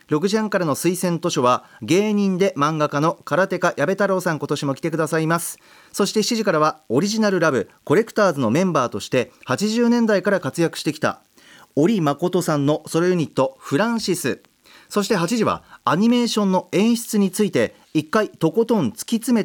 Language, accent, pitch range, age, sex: Japanese, native, 155-215 Hz, 40-59, male